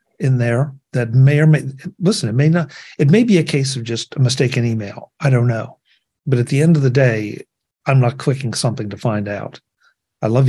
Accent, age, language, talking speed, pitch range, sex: American, 50-69, English, 225 wpm, 120-145 Hz, male